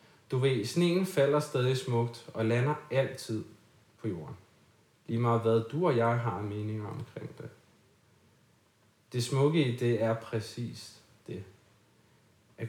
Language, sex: Danish, male